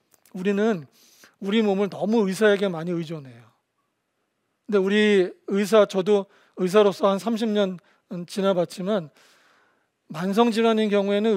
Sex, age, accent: male, 40-59, native